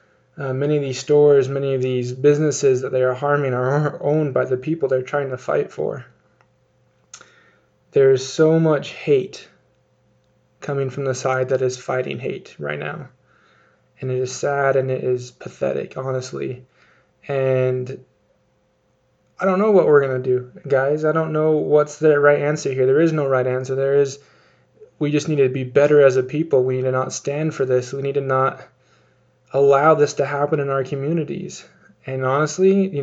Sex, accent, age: male, American, 20-39